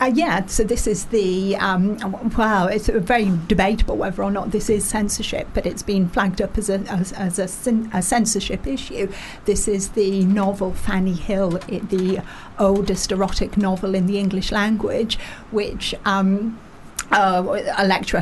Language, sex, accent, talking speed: English, female, British, 170 wpm